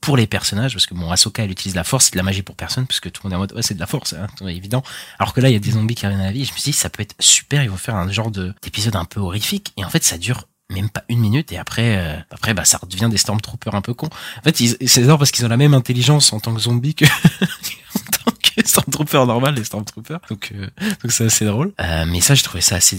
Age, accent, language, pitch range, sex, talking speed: 20-39, French, French, 90-120 Hz, male, 320 wpm